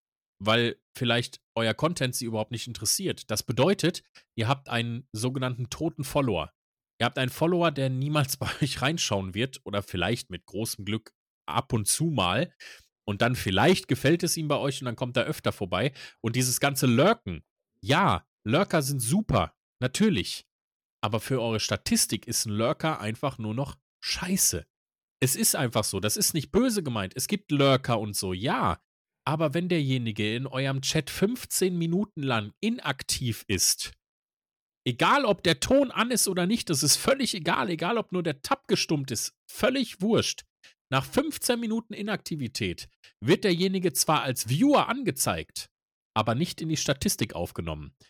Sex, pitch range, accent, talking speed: male, 115-170 Hz, German, 165 wpm